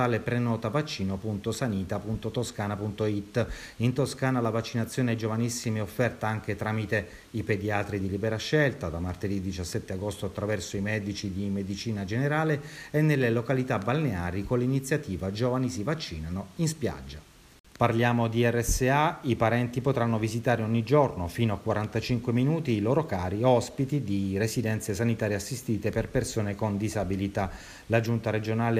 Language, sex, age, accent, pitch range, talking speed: Italian, male, 30-49, native, 105-125 Hz, 135 wpm